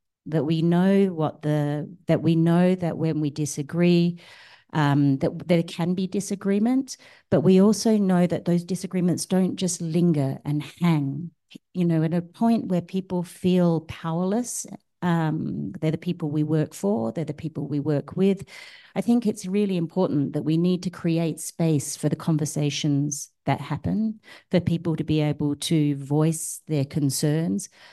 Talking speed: 165 wpm